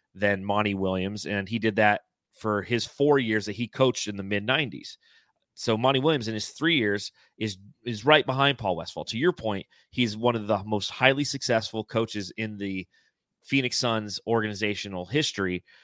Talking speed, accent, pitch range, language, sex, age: 180 wpm, American, 105-125 Hz, English, male, 30-49